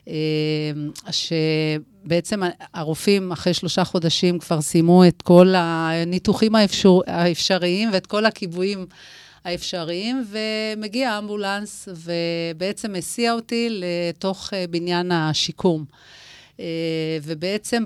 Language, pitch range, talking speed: Hebrew, 165-200 Hz, 85 wpm